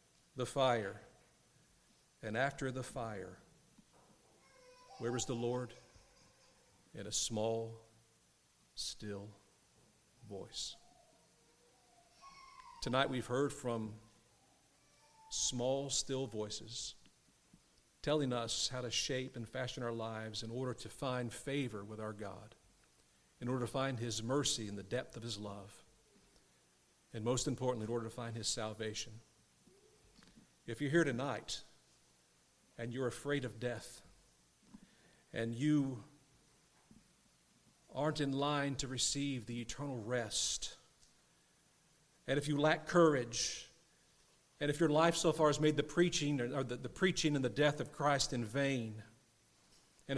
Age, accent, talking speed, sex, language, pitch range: 50-69, American, 125 wpm, male, English, 115-145 Hz